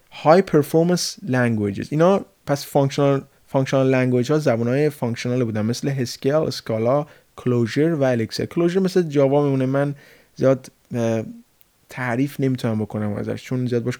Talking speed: 130 wpm